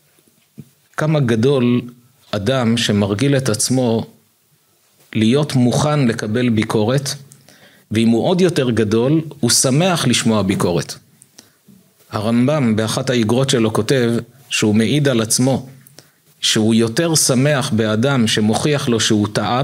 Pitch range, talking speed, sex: 115-150 Hz, 110 wpm, male